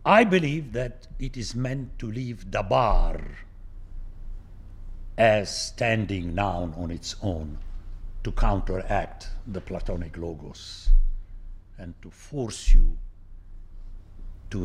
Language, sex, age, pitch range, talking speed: English, male, 60-79, 90-120 Hz, 105 wpm